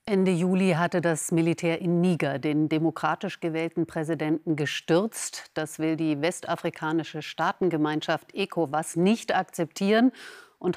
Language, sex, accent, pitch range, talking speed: German, female, German, 160-195 Hz, 115 wpm